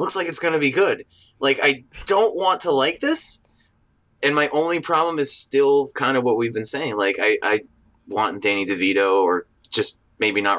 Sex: male